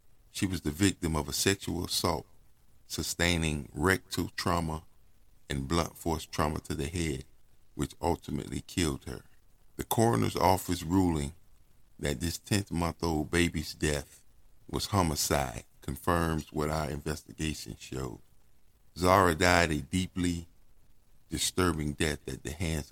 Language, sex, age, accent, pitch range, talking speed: English, male, 50-69, American, 75-90 Hz, 125 wpm